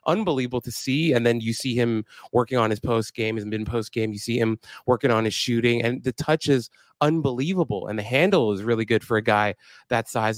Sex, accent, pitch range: male, American, 110-135 Hz